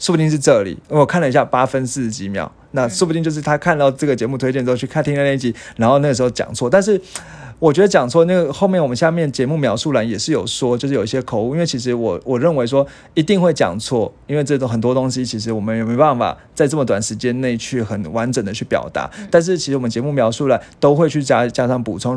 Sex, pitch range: male, 120-155 Hz